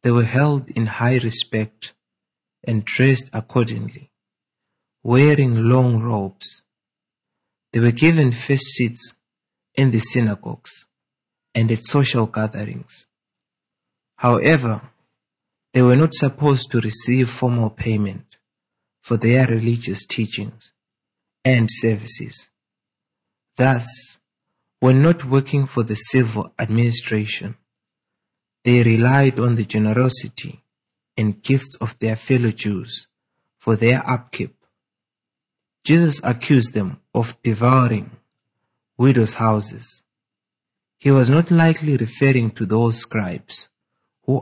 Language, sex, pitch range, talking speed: English, male, 110-130 Hz, 105 wpm